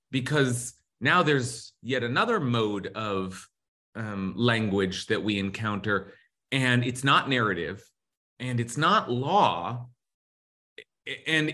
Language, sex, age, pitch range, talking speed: English, male, 30-49, 115-155 Hz, 110 wpm